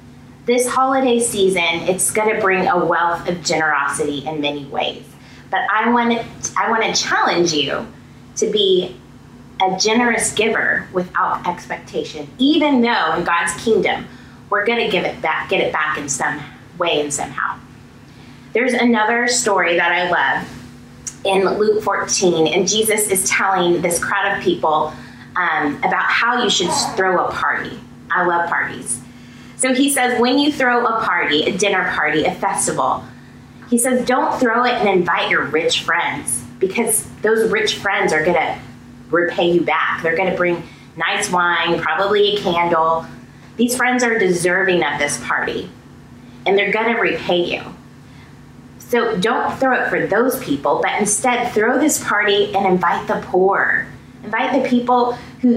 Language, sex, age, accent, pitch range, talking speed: English, female, 20-39, American, 170-235 Hz, 160 wpm